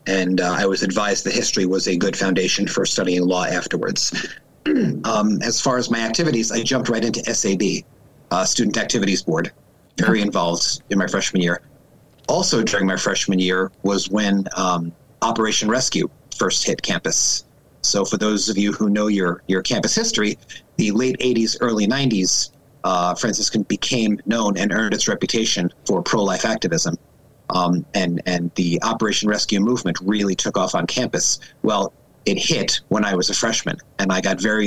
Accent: American